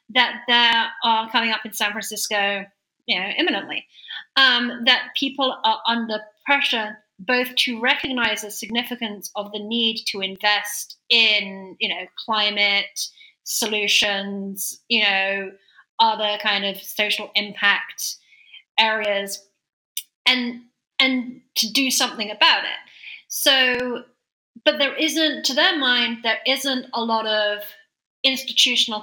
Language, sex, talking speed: English, female, 125 wpm